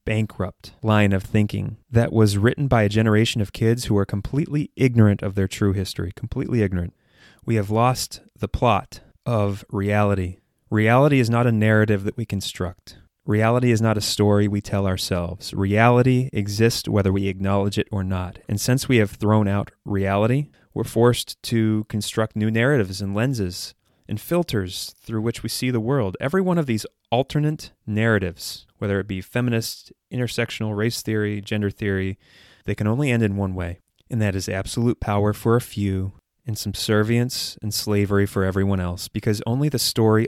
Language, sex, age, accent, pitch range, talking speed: English, male, 30-49, American, 100-115 Hz, 175 wpm